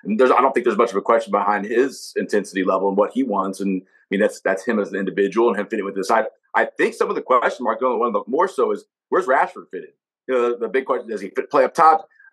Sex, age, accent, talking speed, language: male, 30-49, American, 295 wpm, English